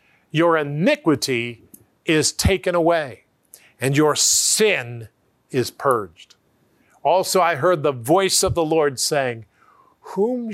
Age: 50-69